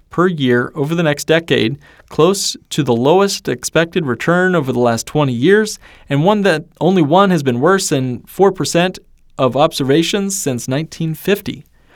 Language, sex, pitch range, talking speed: English, male, 130-180 Hz, 155 wpm